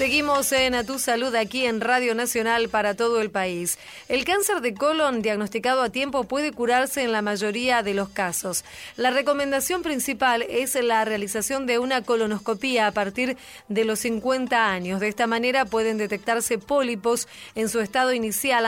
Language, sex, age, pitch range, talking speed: Spanish, female, 30-49, 220-265 Hz, 170 wpm